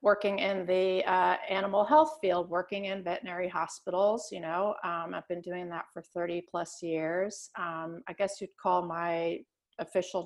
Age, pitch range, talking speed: 40-59, 180-215 Hz, 170 wpm